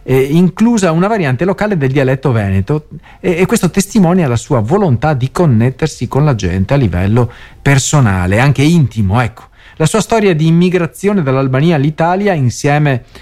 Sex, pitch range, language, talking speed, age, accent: male, 110-165 Hz, Italian, 150 wpm, 40-59, native